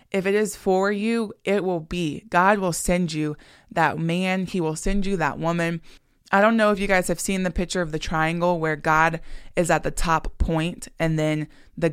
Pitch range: 155-185 Hz